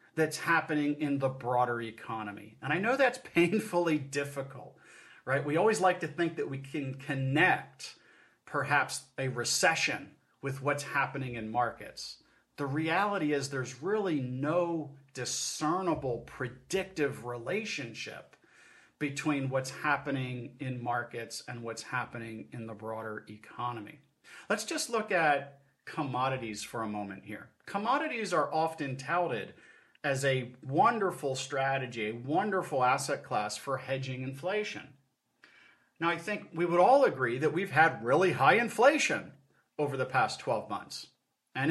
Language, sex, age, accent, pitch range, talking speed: English, male, 40-59, American, 125-170 Hz, 135 wpm